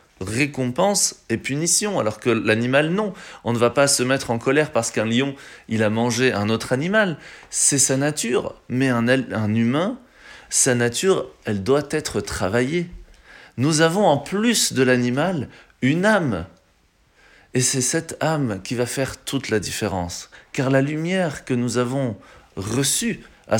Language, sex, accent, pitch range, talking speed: French, male, French, 120-160 Hz, 160 wpm